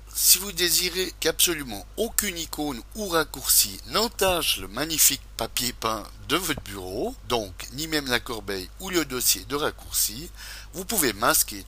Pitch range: 105-160 Hz